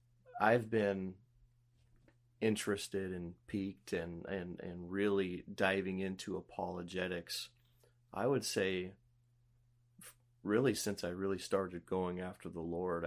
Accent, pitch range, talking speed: American, 90-115 Hz, 105 wpm